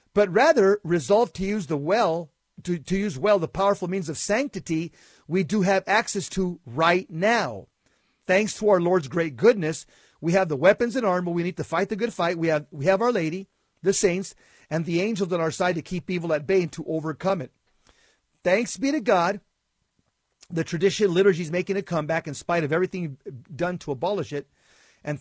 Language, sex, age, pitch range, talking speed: English, male, 50-69, 160-195 Hz, 205 wpm